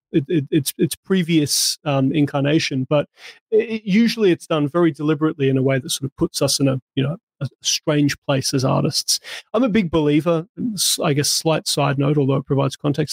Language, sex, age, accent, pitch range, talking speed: English, male, 30-49, Australian, 140-170 Hz, 200 wpm